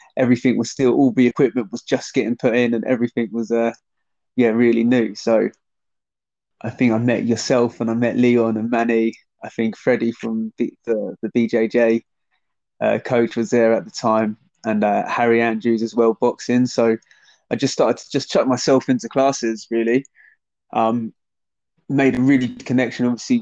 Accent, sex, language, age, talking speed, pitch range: British, male, English, 20-39, 180 wpm, 115-135 Hz